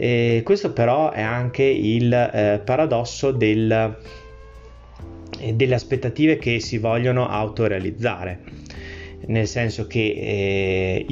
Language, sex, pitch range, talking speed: Italian, male, 95-115 Hz, 105 wpm